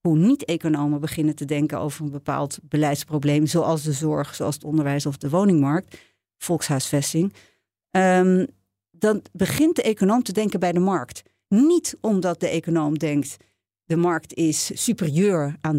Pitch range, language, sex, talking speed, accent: 145-205 Hz, Dutch, female, 150 wpm, Dutch